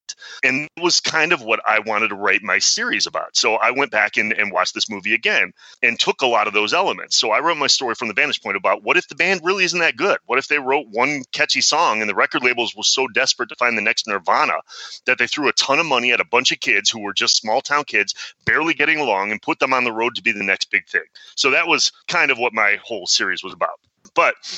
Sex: male